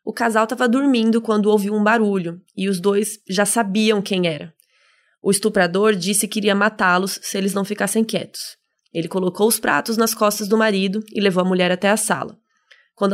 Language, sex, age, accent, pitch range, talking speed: Portuguese, female, 20-39, Brazilian, 195-235 Hz, 190 wpm